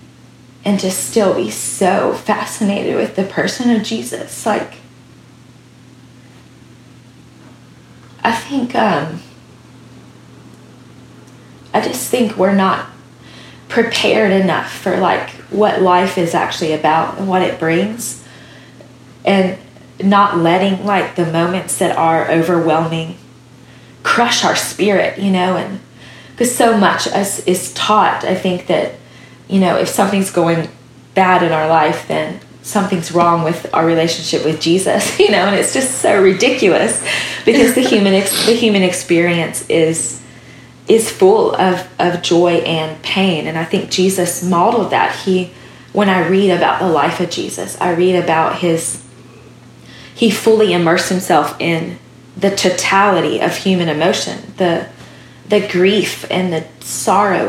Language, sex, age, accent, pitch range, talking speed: English, female, 20-39, American, 165-200 Hz, 135 wpm